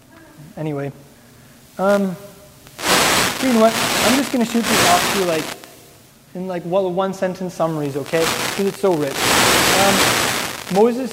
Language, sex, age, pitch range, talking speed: English, male, 20-39, 160-205 Hz, 145 wpm